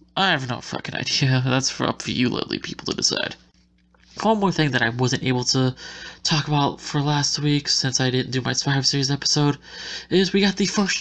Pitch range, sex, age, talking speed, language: 130-165 Hz, male, 20-39, 215 wpm, English